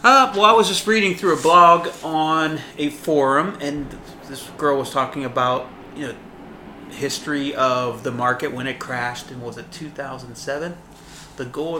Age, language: 30-49, English